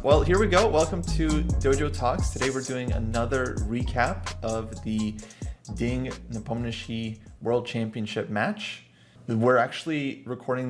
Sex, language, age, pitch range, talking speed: male, English, 30-49, 105-125 Hz, 130 wpm